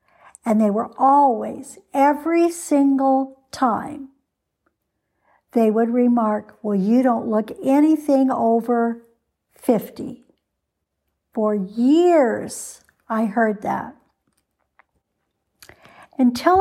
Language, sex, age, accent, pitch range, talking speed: English, female, 60-79, American, 210-250 Hz, 85 wpm